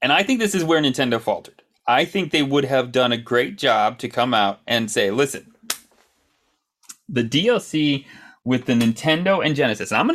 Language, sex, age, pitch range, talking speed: English, male, 30-49, 120-155 Hz, 190 wpm